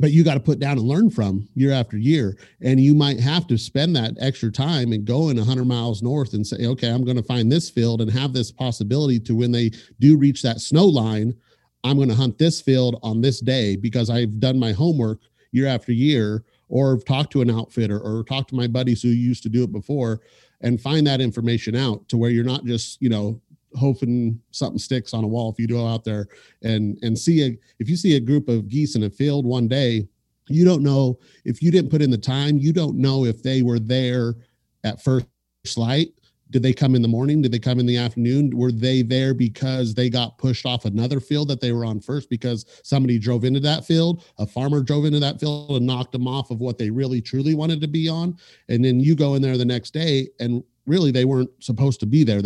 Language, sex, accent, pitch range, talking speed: English, male, American, 115-140 Hz, 240 wpm